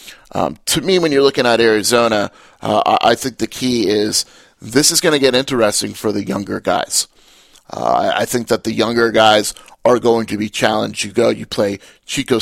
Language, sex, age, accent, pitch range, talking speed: English, male, 30-49, American, 110-125 Hz, 200 wpm